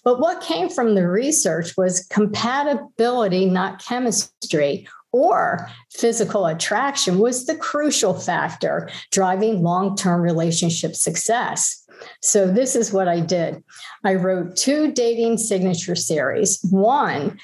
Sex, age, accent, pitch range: female, 50-69, American, 180-230 Hz